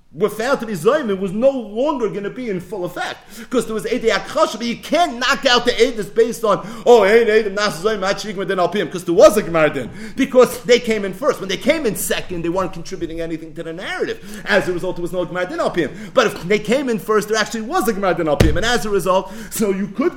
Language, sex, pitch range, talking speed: English, male, 180-240 Hz, 240 wpm